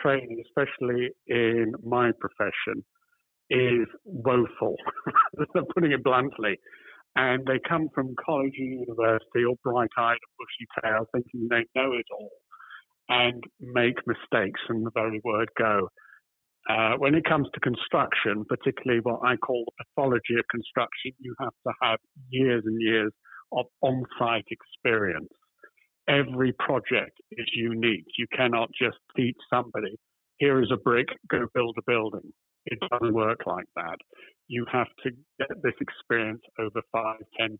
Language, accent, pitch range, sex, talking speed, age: English, British, 115-130 Hz, male, 145 wpm, 50-69